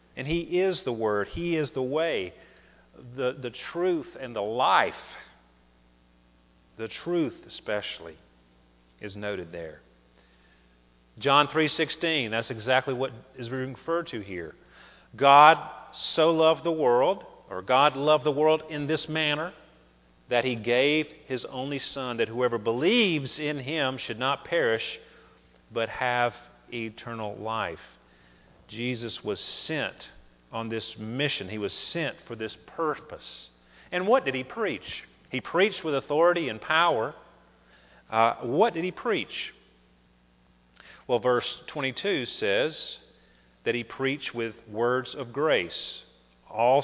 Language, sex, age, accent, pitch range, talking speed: English, male, 40-59, American, 95-150 Hz, 130 wpm